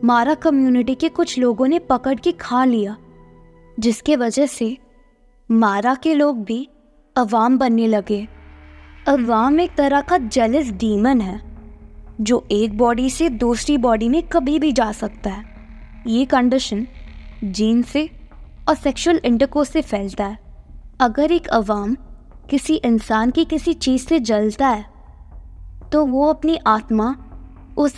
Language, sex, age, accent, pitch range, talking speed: Hindi, female, 20-39, native, 220-295 Hz, 140 wpm